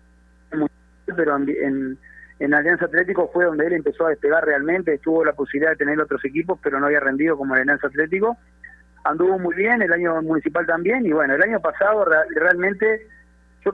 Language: Spanish